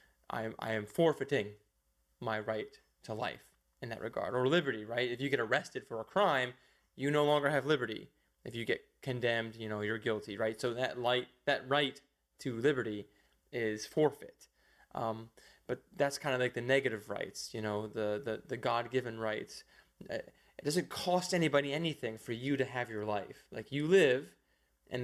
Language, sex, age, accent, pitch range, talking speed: English, male, 20-39, American, 110-140 Hz, 175 wpm